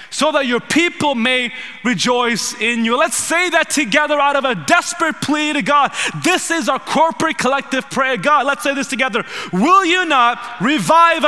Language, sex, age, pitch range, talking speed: English, male, 20-39, 245-295 Hz, 180 wpm